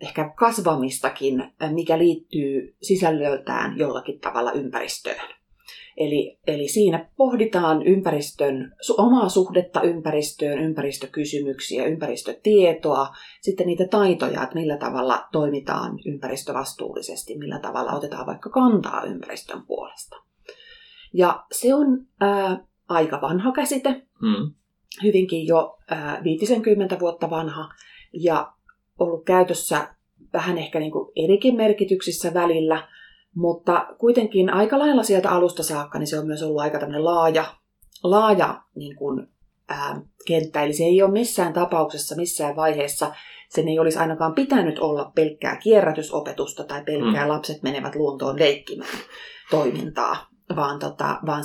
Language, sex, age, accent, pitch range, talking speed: Finnish, female, 30-49, native, 150-200 Hz, 115 wpm